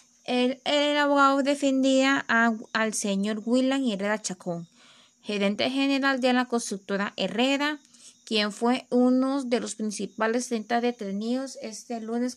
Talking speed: 125 wpm